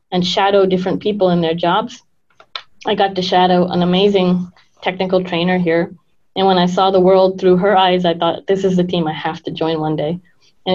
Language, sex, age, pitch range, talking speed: English, female, 20-39, 170-205 Hz, 210 wpm